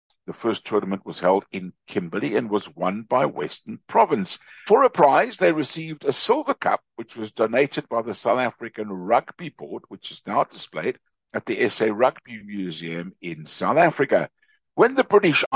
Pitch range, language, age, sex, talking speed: 100-160 Hz, English, 60-79, male, 175 wpm